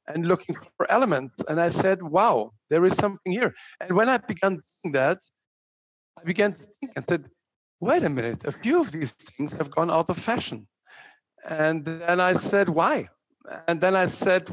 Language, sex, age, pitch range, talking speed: English, male, 50-69, 140-175 Hz, 190 wpm